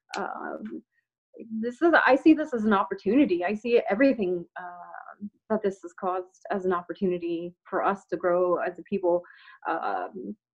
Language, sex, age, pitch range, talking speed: English, female, 30-49, 195-275 Hz, 160 wpm